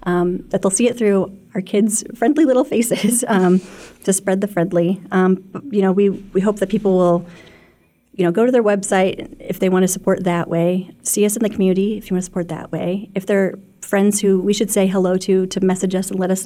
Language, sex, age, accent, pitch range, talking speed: English, female, 30-49, American, 175-200 Hz, 240 wpm